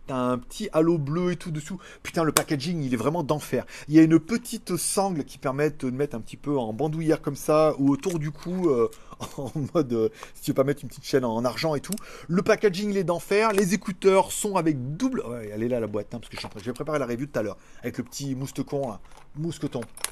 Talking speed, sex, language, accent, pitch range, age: 260 wpm, male, French, French, 140-205 Hz, 30-49